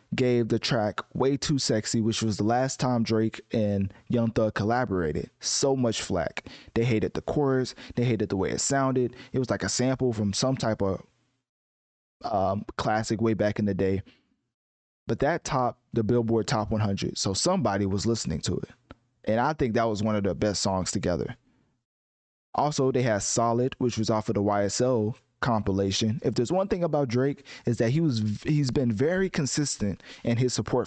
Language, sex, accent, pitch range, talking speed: English, male, American, 105-125 Hz, 190 wpm